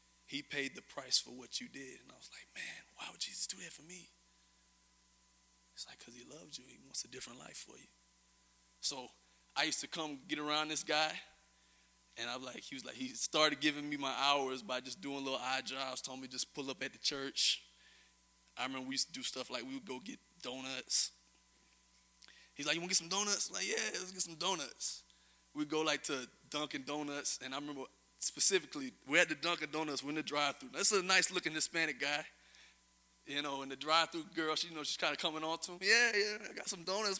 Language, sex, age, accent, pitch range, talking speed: English, male, 20-39, American, 130-185 Hz, 230 wpm